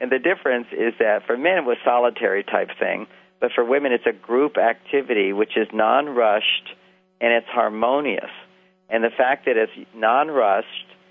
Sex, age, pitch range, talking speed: male, 50-69, 115-195 Hz, 165 wpm